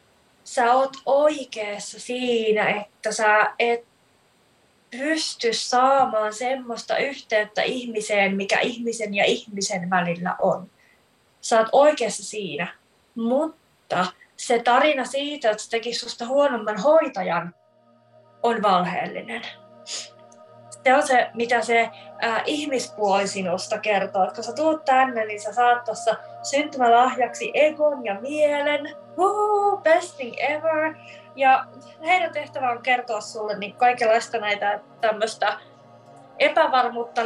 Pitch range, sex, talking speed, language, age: 215-270 Hz, female, 110 wpm, Finnish, 20-39